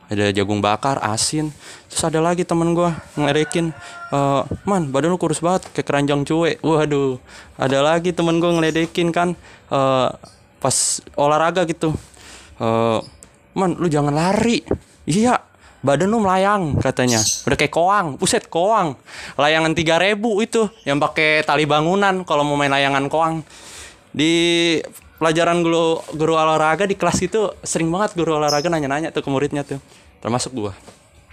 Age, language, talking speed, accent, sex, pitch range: 20-39, Indonesian, 145 wpm, native, male, 120-170 Hz